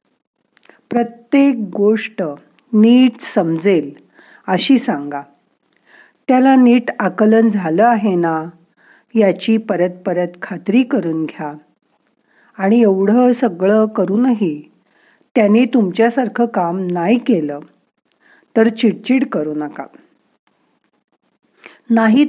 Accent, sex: native, female